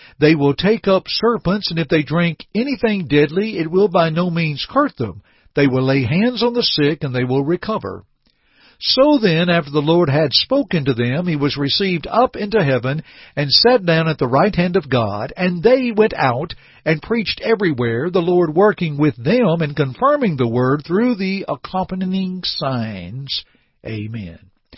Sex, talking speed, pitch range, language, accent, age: male, 180 wpm, 140-210 Hz, English, American, 60-79